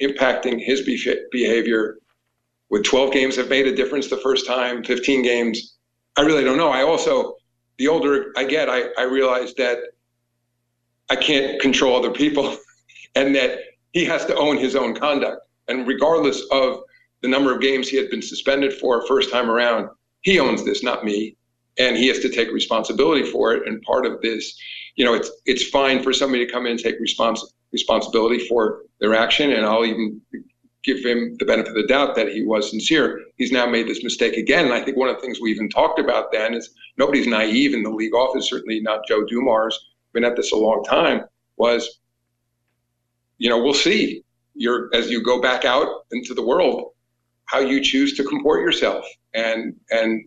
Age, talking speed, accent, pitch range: 50-69, 195 wpm, American, 115-135 Hz